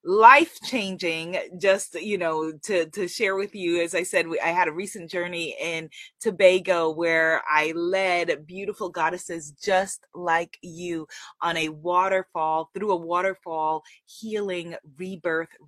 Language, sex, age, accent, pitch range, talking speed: English, female, 20-39, American, 160-195 Hz, 140 wpm